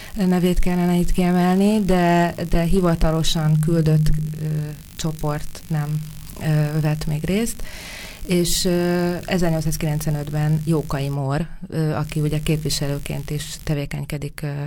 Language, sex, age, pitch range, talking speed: Hungarian, female, 20-39, 155-175 Hz, 90 wpm